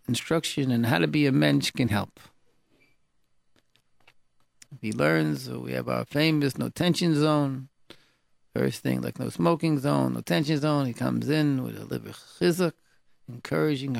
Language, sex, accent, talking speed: English, male, American, 150 wpm